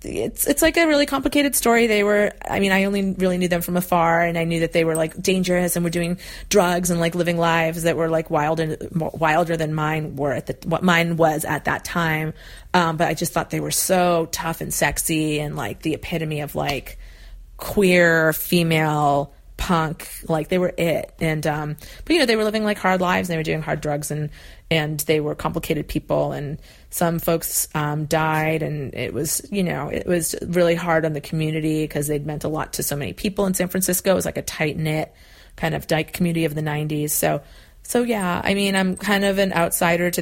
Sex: female